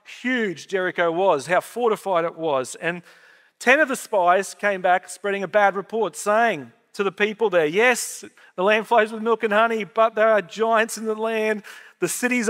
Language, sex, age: English, male, 40-59